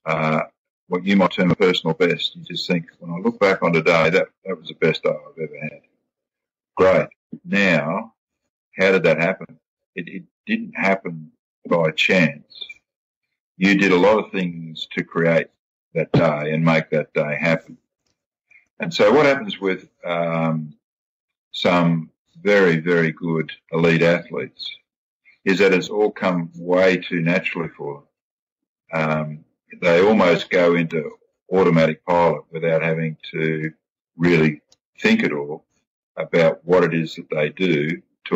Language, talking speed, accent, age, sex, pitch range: English, 150 wpm, Australian, 50-69, male, 80-90 Hz